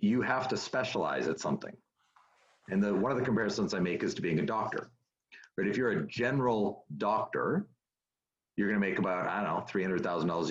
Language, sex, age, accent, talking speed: English, male, 40-59, American, 190 wpm